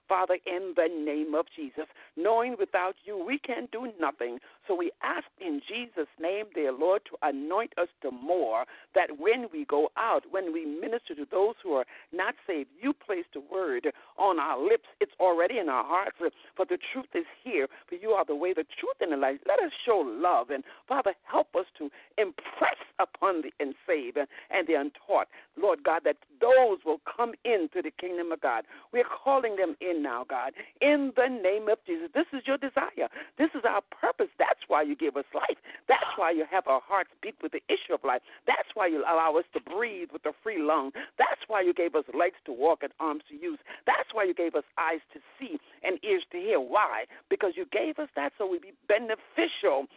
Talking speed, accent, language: 215 wpm, American, English